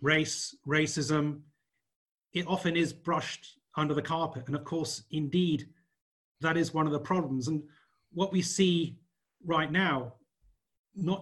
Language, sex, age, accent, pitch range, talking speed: English, male, 30-49, British, 145-175 Hz, 140 wpm